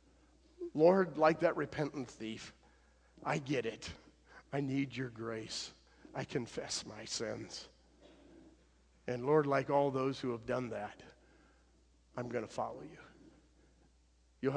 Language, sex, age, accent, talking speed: English, male, 50-69, American, 130 wpm